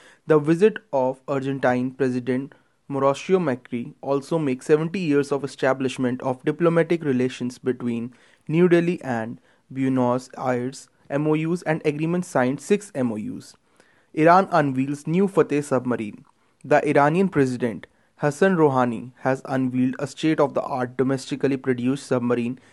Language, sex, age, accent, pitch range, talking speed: English, male, 20-39, Indian, 130-160 Hz, 115 wpm